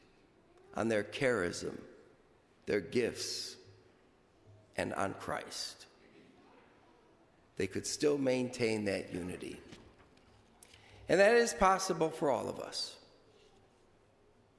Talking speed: 90 wpm